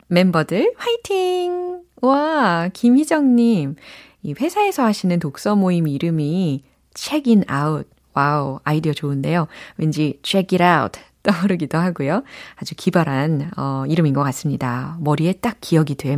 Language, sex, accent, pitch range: Korean, female, native, 150-235 Hz